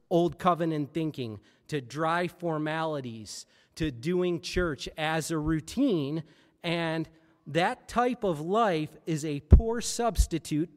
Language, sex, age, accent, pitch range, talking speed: English, male, 40-59, American, 150-180 Hz, 115 wpm